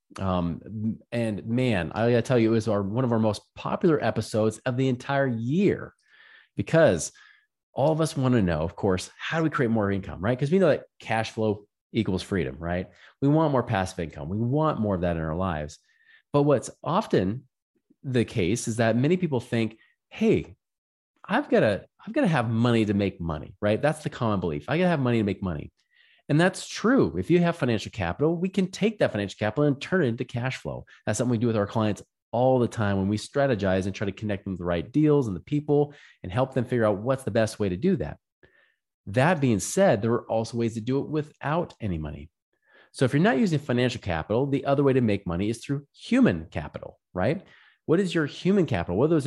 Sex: male